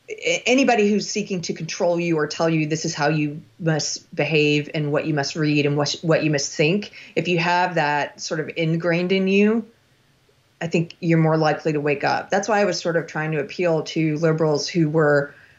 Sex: female